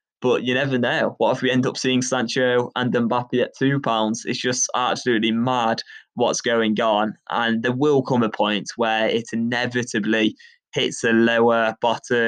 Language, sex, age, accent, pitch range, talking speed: English, male, 20-39, British, 115-125 Hz, 170 wpm